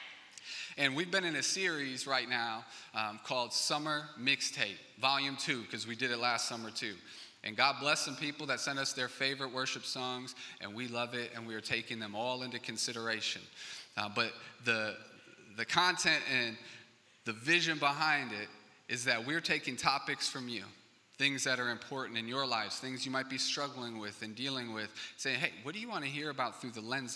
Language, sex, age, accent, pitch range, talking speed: English, male, 30-49, American, 120-140 Hz, 200 wpm